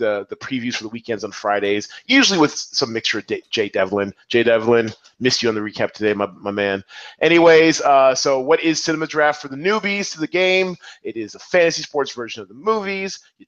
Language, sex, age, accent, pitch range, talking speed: English, male, 30-49, American, 120-165 Hz, 225 wpm